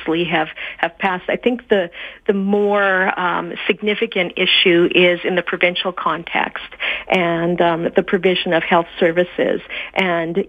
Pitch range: 170-195 Hz